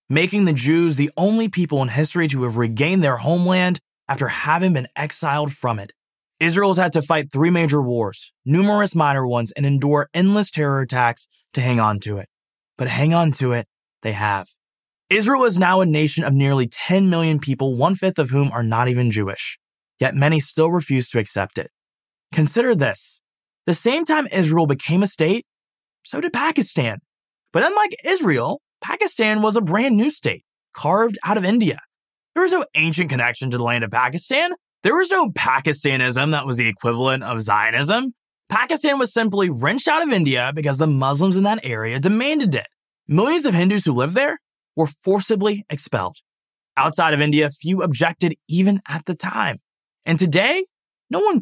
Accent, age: American, 20-39